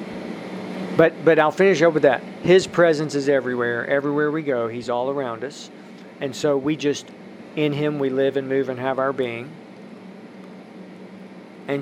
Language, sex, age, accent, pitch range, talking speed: English, male, 50-69, American, 135-160 Hz, 170 wpm